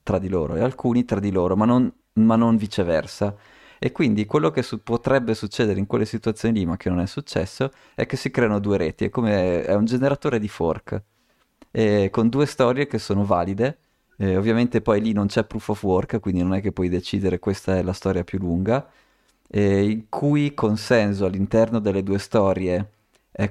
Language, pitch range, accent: Italian, 100-115 Hz, native